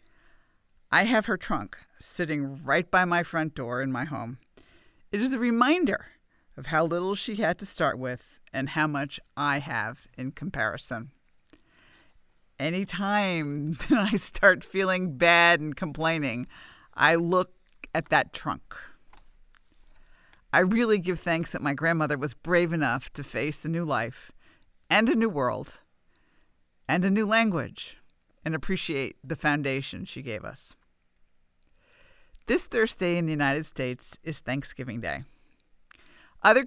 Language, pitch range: English, 140-205 Hz